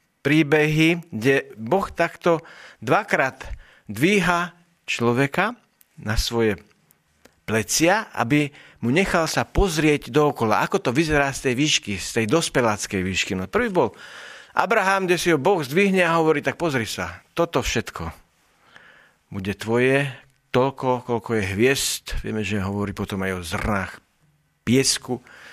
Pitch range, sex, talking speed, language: 105-150 Hz, male, 130 wpm, Slovak